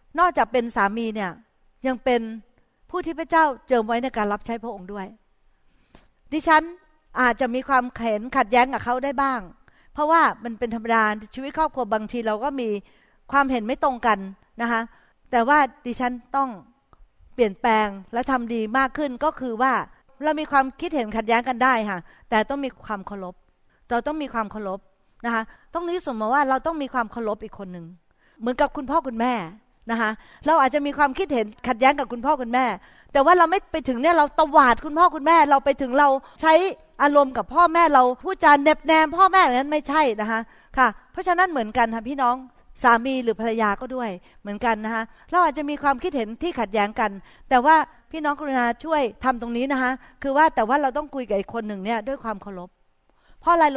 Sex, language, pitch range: female, Thai, 225-290 Hz